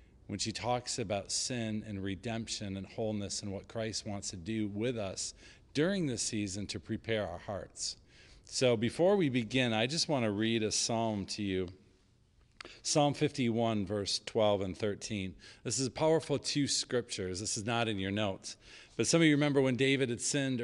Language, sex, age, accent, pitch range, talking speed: English, male, 40-59, American, 105-125 Hz, 185 wpm